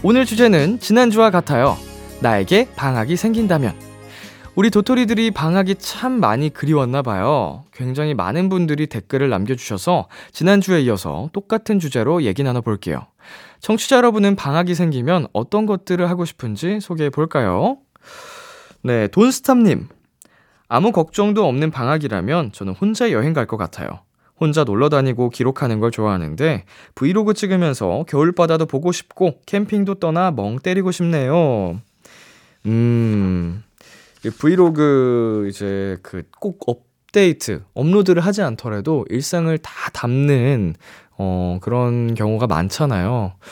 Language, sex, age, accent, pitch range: Korean, male, 20-39, native, 110-180 Hz